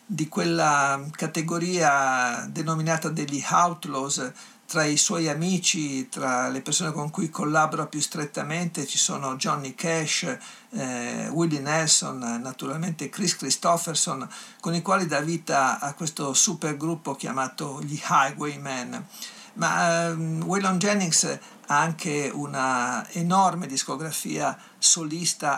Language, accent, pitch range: Italian, native, 140-170 Hz